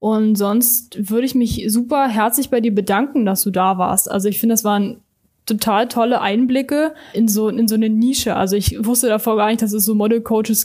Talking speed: 215 wpm